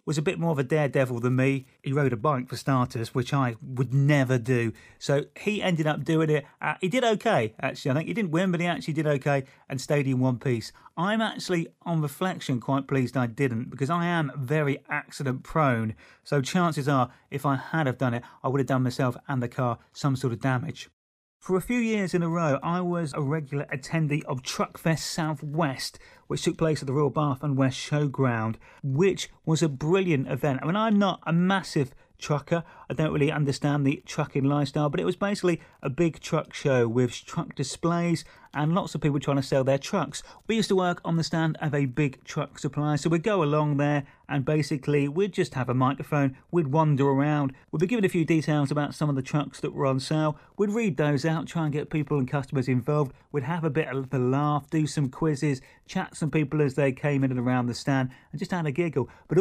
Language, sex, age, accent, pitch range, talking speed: English, male, 30-49, British, 135-165 Hz, 225 wpm